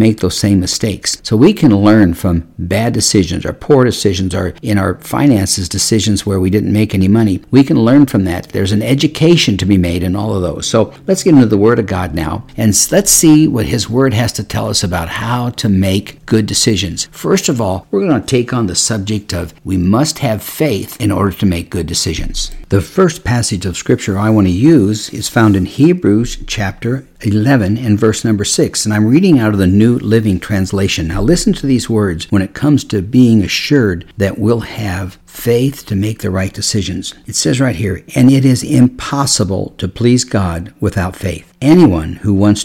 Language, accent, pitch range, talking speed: English, American, 95-120 Hz, 210 wpm